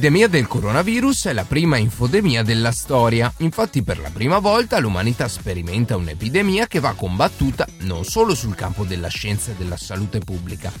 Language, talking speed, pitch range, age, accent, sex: Italian, 165 wpm, 100-170 Hz, 30-49, native, male